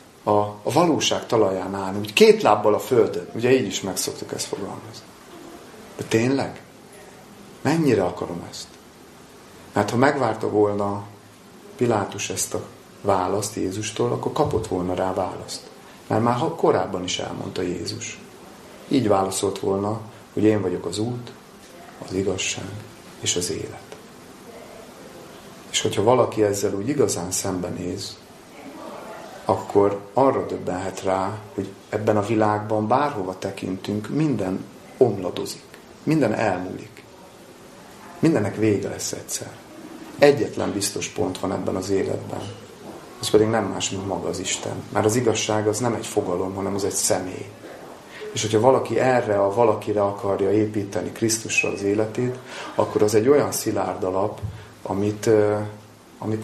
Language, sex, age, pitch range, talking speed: Hungarian, male, 30-49, 95-110 Hz, 130 wpm